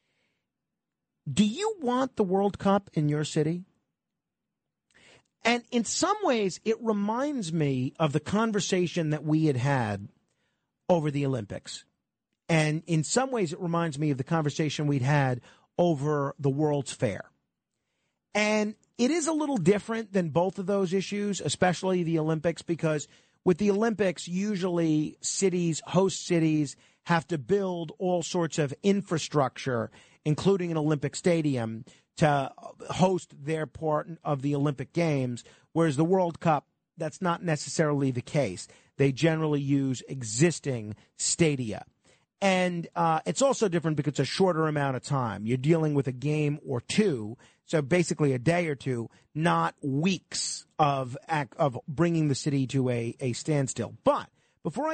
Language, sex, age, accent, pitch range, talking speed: English, male, 40-59, American, 140-185 Hz, 145 wpm